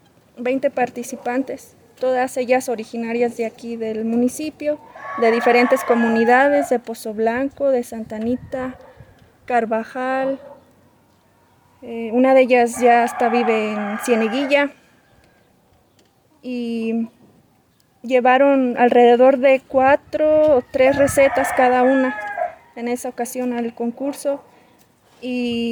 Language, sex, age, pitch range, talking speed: Spanish, female, 20-39, 235-265 Hz, 100 wpm